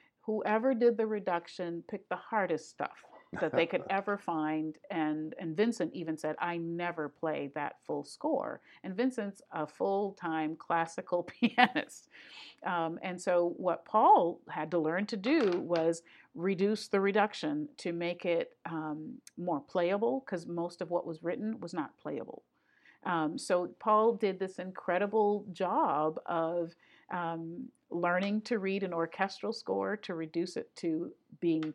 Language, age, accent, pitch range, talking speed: English, 50-69, American, 165-210 Hz, 150 wpm